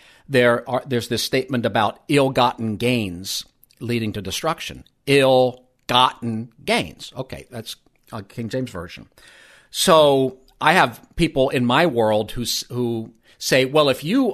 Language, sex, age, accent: English, male, 50-69, American